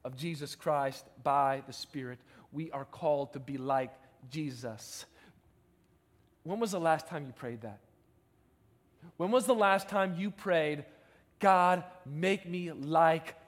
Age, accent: 40-59, American